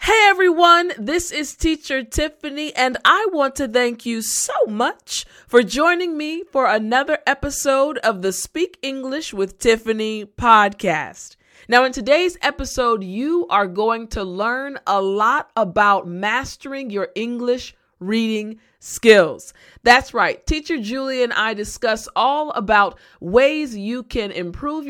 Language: English